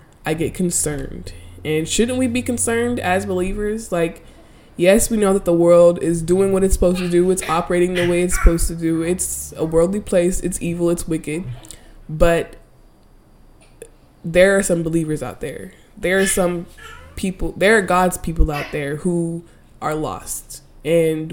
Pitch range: 155-190 Hz